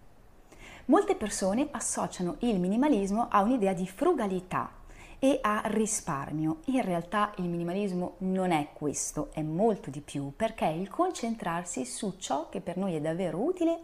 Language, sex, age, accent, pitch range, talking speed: Italian, female, 30-49, native, 160-255 Hz, 150 wpm